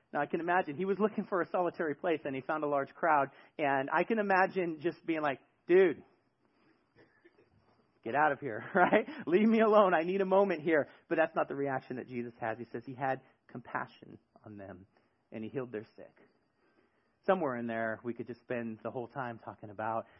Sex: male